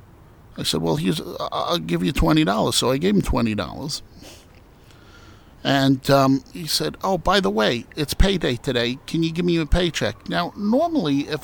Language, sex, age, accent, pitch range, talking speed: English, male, 50-69, American, 120-180 Hz, 170 wpm